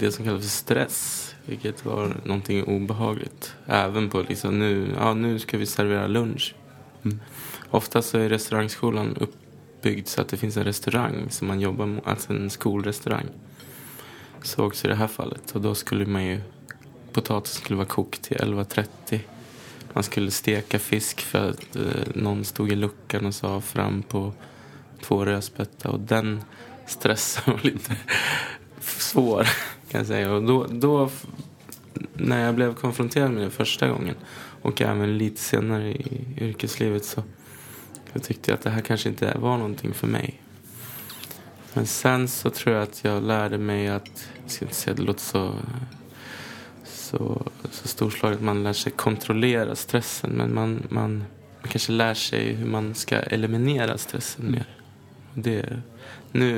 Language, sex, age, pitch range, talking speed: Swedish, male, 20-39, 105-130 Hz, 160 wpm